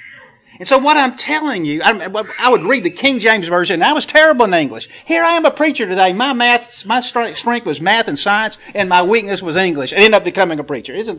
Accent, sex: American, male